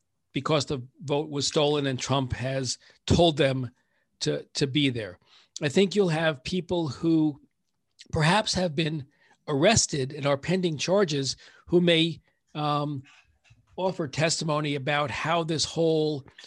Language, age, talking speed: English, 50-69, 135 wpm